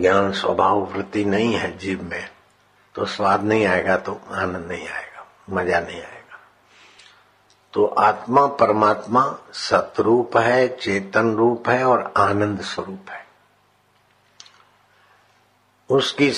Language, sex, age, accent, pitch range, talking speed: Hindi, male, 60-79, native, 100-120 Hz, 115 wpm